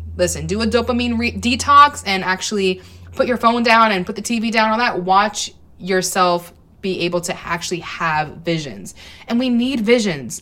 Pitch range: 185-230 Hz